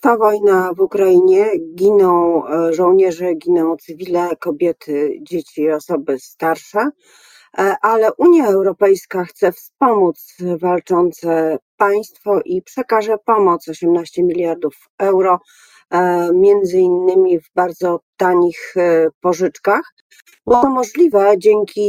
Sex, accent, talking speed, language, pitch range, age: female, native, 100 wpm, Polish, 160-220 Hz, 40-59